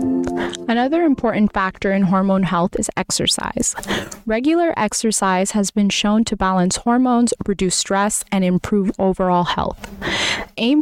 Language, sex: English, female